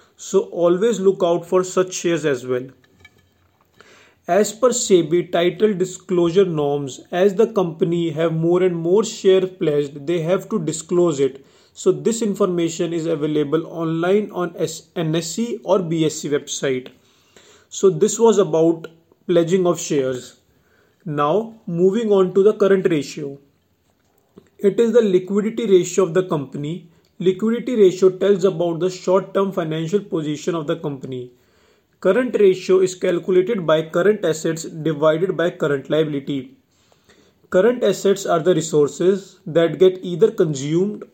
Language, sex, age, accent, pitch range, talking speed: English, male, 30-49, Indian, 155-195 Hz, 135 wpm